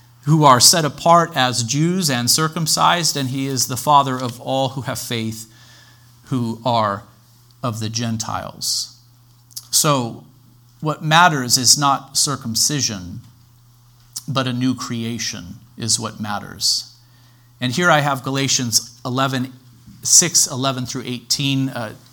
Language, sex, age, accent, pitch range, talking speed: English, male, 40-59, American, 115-135 Hz, 125 wpm